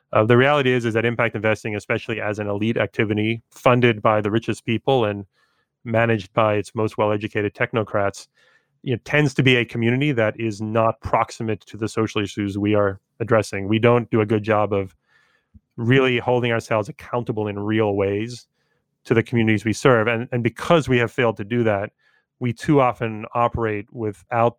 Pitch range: 105-120 Hz